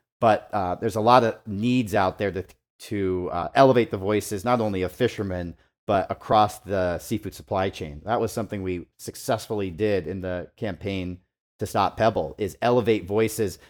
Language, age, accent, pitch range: English, 40-59, American, 95-110 Hz